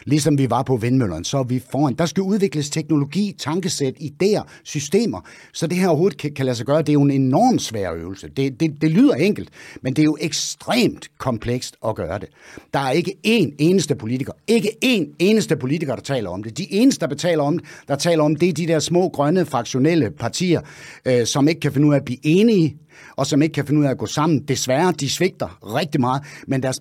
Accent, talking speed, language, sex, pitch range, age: native, 235 wpm, Danish, male, 130-160 Hz, 60-79